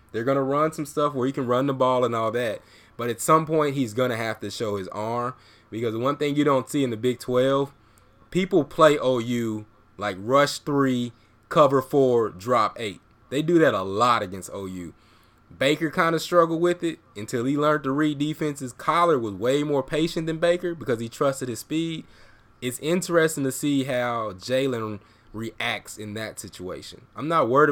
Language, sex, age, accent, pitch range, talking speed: English, male, 20-39, American, 110-140 Hz, 195 wpm